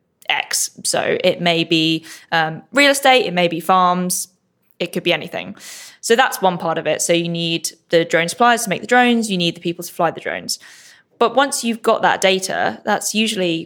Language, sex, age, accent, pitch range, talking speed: English, female, 20-39, British, 170-205 Hz, 210 wpm